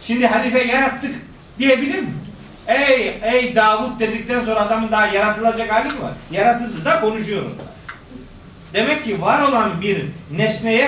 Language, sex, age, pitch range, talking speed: Turkish, male, 50-69, 205-260 Hz, 140 wpm